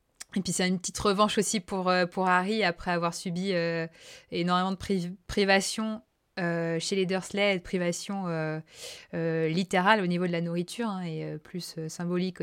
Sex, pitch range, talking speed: female, 170-195 Hz, 175 wpm